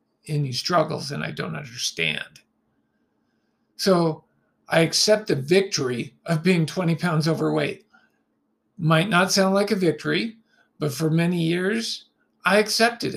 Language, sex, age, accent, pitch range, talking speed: English, male, 50-69, American, 150-180 Hz, 130 wpm